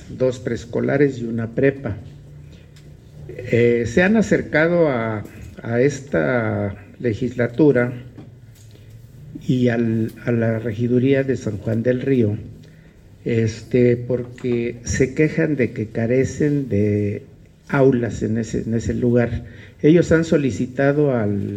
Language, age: Spanish, 60-79